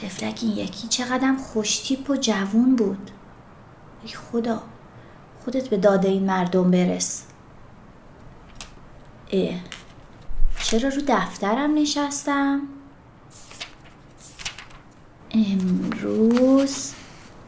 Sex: female